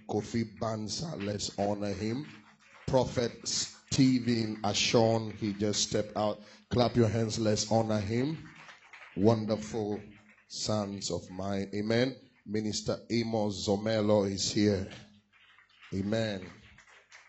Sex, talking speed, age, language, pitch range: male, 100 wpm, 30-49, English, 100-115 Hz